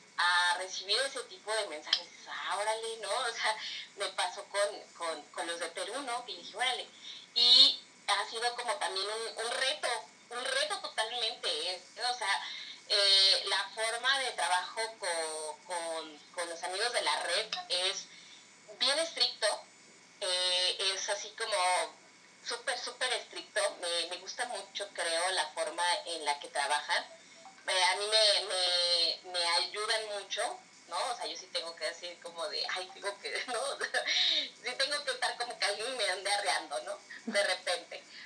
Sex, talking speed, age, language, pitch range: female, 165 wpm, 30-49, Spanish, 175-220 Hz